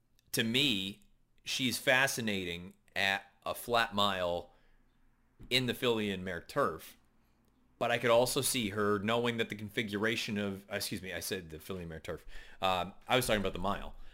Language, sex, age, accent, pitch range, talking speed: English, male, 30-49, American, 100-125 Hz, 170 wpm